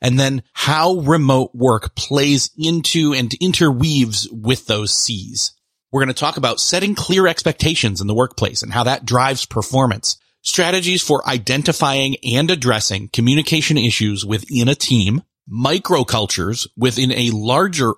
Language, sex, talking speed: English, male, 140 wpm